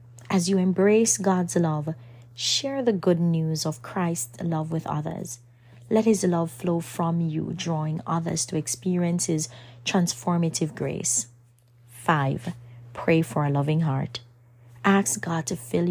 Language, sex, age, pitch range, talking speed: English, female, 30-49, 125-180 Hz, 140 wpm